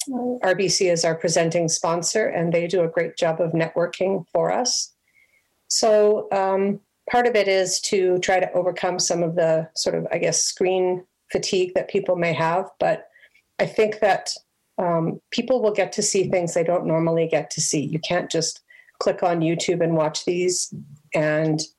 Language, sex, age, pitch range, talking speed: English, female, 40-59, 160-185 Hz, 180 wpm